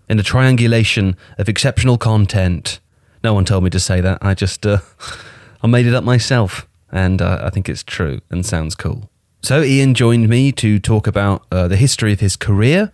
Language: English